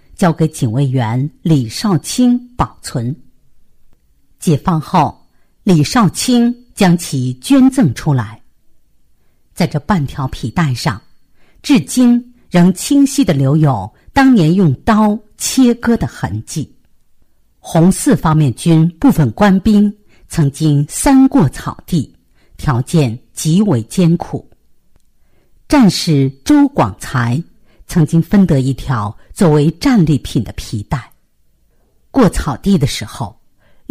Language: Chinese